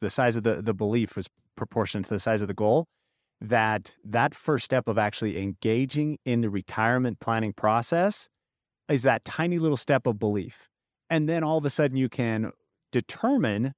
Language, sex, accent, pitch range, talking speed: English, male, American, 105-135 Hz, 185 wpm